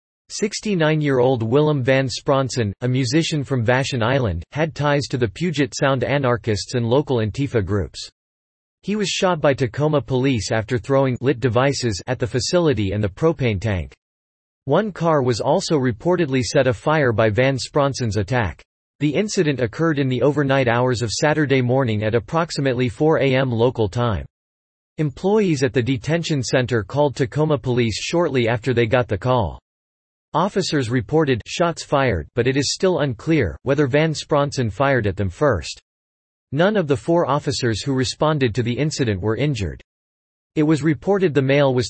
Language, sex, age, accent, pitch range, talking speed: English, male, 40-59, American, 115-150 Hz, 160 wpm